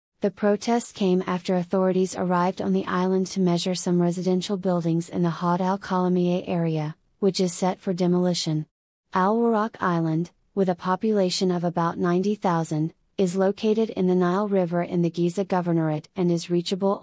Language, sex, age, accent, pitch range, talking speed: English, female, 30-49, American, 175-195 Hz, 165 wpm